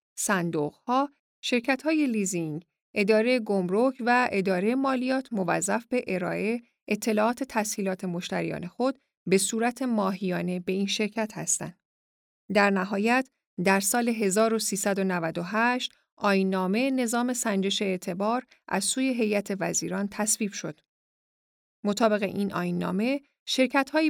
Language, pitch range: Persian, 190-250 Hz